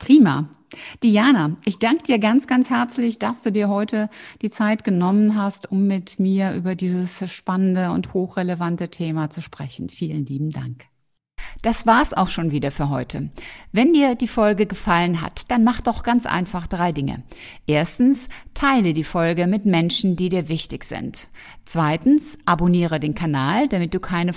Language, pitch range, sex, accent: German, 165-215 Hz, female, German